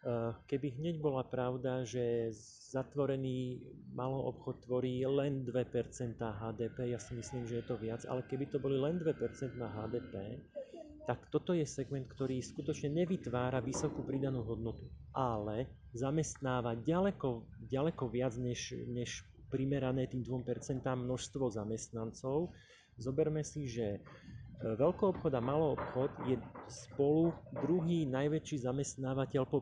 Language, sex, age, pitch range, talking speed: Slovak, male, 30-49, 120-145 Hz, 130 wpm